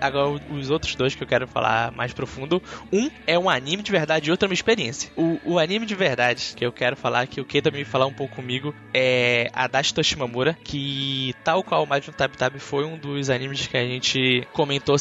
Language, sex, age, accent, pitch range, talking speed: Portuguese, male, 10-29, Brazilian, 135-165 Hz, 230 wpm